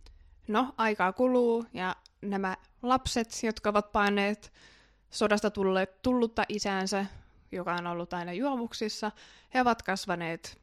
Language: Finnish